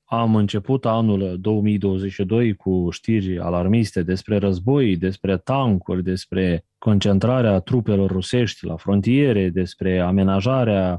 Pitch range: 95-125 Hz